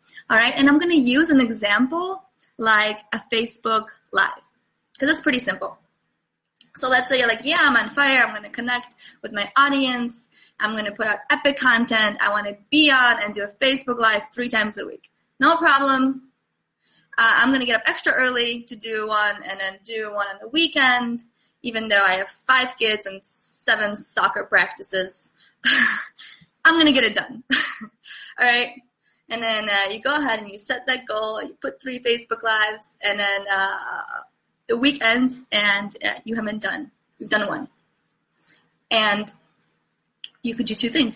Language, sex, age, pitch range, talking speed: English, female, 20-39, 210-265 Hz, 185 wpm